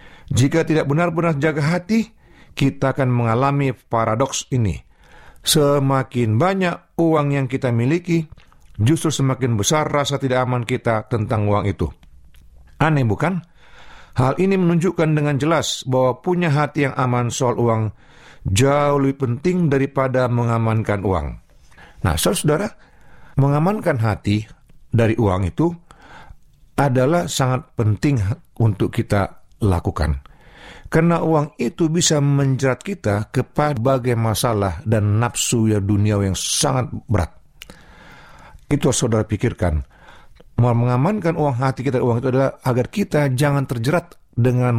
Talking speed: 120 wpm